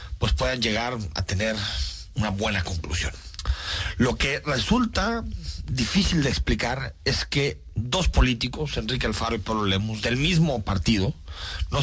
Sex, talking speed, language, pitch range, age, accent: male, 135 wpm, Spanish, 85-125 Hz, 40-59, Mexican